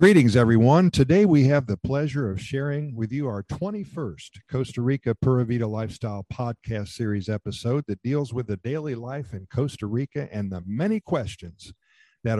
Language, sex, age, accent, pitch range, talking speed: English, male, 50-69, American, 105-130 Hz, 170 wpm